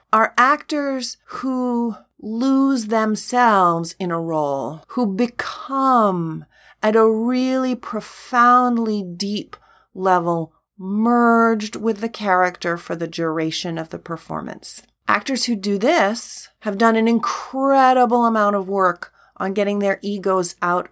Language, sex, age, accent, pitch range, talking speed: English, female, 30-49, American, 185-245 Hz, 120 wpm